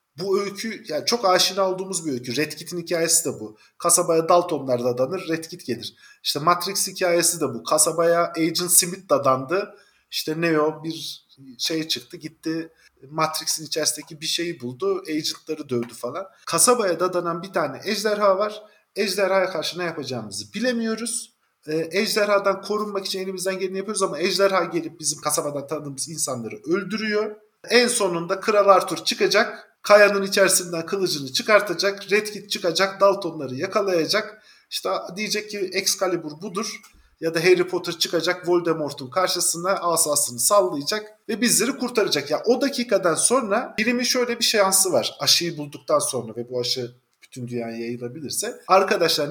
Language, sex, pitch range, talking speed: Turkish, male, 155-200 Hz, 145 wpm